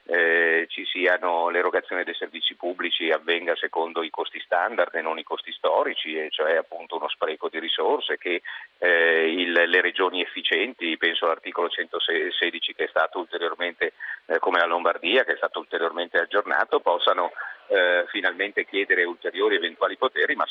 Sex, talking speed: male, 150 wpm